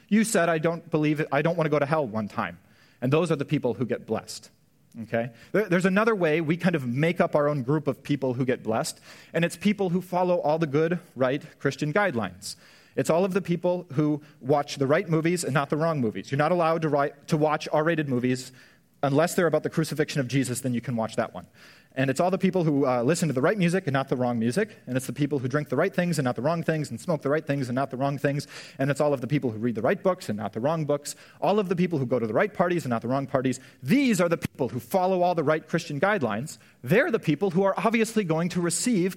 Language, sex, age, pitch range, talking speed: English, male, 30-49, 135-180 Hz, 275 wpm